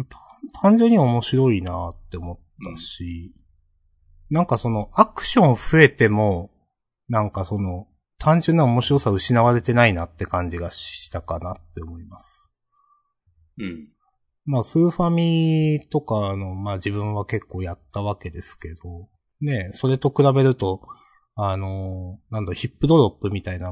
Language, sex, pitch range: Japanese, male, 90-145 Hz